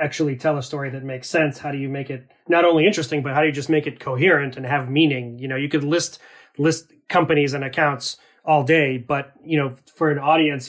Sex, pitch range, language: male, 135-155 Hz, English